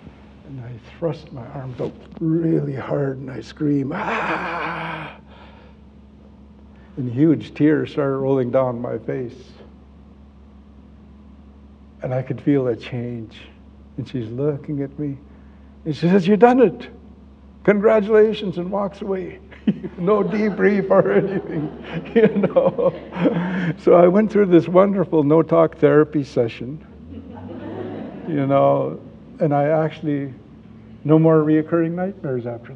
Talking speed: 120 wpm